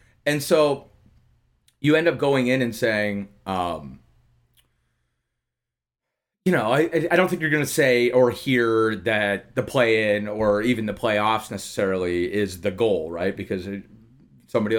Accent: American